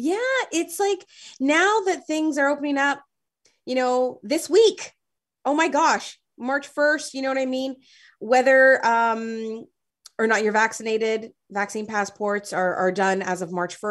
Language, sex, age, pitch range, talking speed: English, female, 30-49, 195-265 Hz, 160 wpm